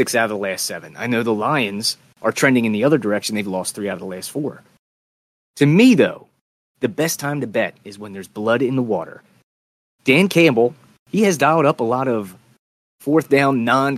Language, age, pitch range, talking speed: English, 30-49, 105-140 Hz, 220 wpm